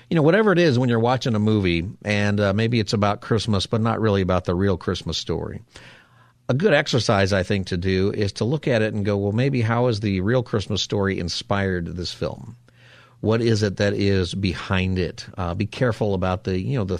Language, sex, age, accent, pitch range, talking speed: English, male, 40-59, American, 95-120 Hz, 225 wpm